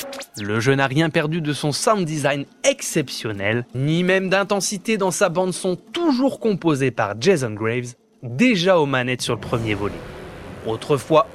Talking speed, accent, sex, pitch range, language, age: 155 wpm, French, male, 120-190 Hz, French, 20-39